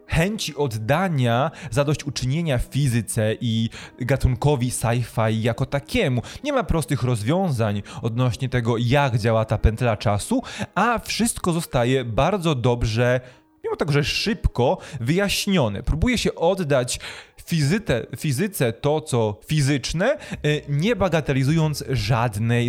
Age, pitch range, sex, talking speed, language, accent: 20-39, 115-145 Hz, male, 105 wpm, Polish, native